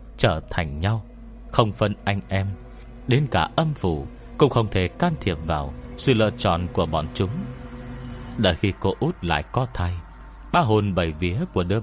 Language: Vietnamese